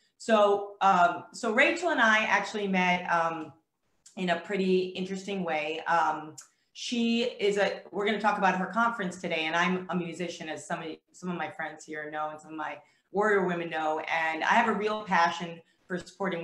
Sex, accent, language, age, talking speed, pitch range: female, American, English, 30-49, 195 wpm, 165-205 Hz